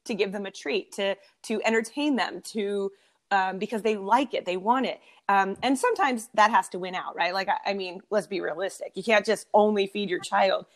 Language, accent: English, American